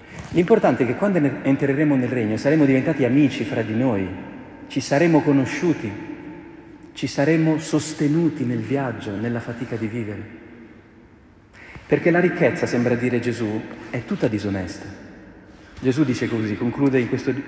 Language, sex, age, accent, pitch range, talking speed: Italian, male, 40-59, native, 110-145 Hz, 135 wpm